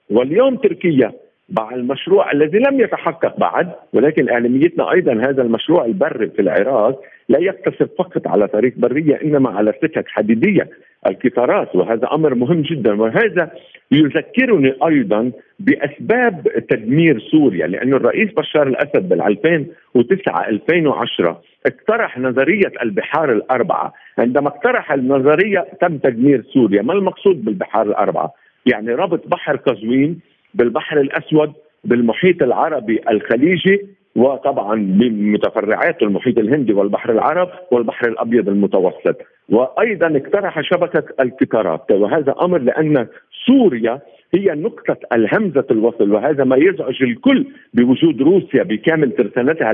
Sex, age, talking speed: male, 50-69, 115 wpm